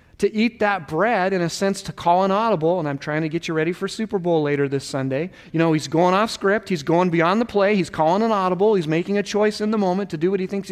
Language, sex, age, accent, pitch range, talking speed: English, male, 40-59, American, 165-220 Hz, 285 wpm